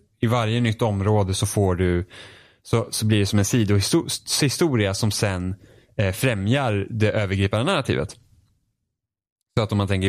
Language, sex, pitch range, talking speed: Swedish, male, 95-115 Hz, 155 wpm